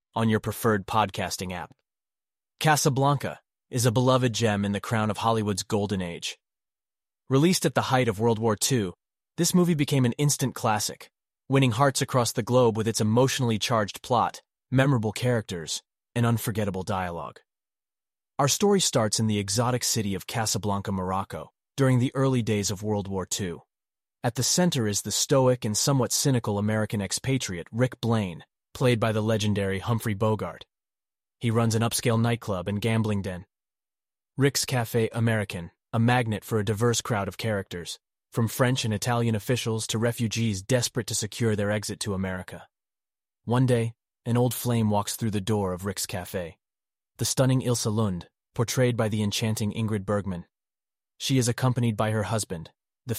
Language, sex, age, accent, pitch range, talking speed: English, male, 30-49, American, 100-125 Hz, 165 wpm